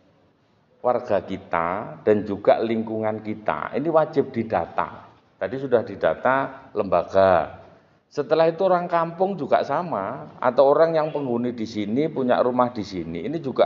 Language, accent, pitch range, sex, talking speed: Indonesian, native, 105-145 Hz, male, 135 wpm